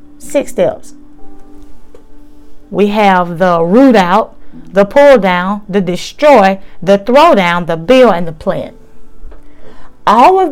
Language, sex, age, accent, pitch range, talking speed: English, female, 30-49, American, 200-285 Hz, 125 wpm